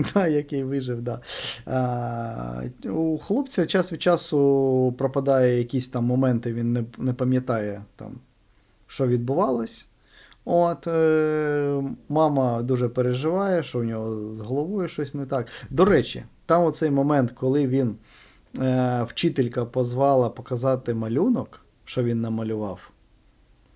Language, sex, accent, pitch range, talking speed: Ukrainian, male, native, 120-155 Hz, 125 wpm